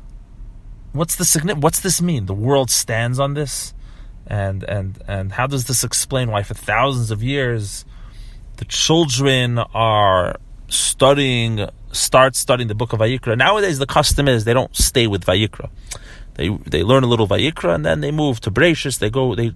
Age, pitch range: 30-49, 105-140 Hz